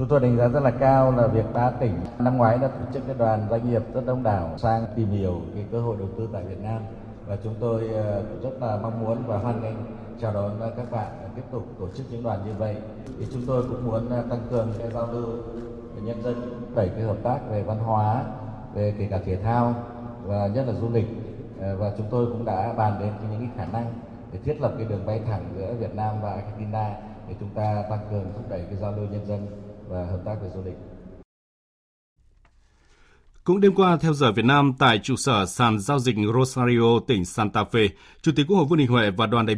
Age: 20-39